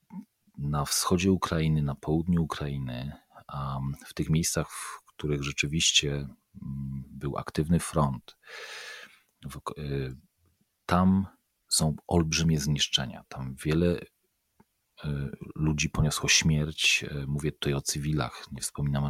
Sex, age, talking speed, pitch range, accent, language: male, 40-59, 95 wpm, 70-85 Hz, native, Polish